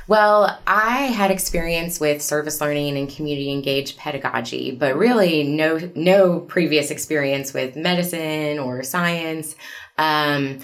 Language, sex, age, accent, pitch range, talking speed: English, female, 20-39, American, 135-155 Hz, 120 wpm